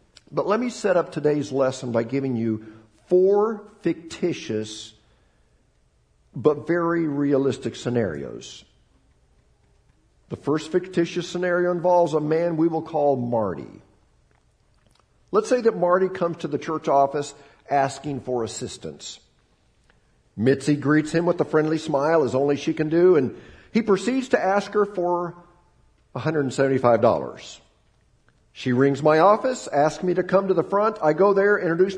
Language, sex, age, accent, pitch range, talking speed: English, male, 50-69, American, 145-200 Hz, 140 wpm